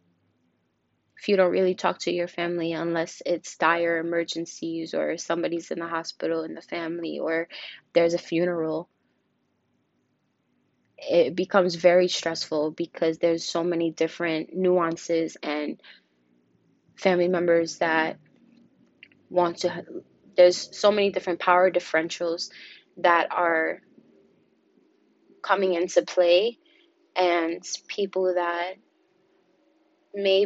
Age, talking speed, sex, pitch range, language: 20-39, 110 wpm, female, 165-185 Hz, English